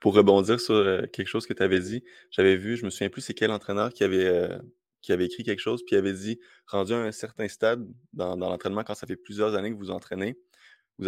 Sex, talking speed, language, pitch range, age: male, 255 wpm, French, 100-115 Hz, 20-39